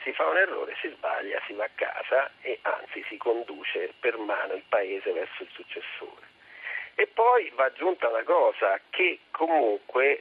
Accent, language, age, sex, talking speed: native, Italian, 40-59, male, 170 wpm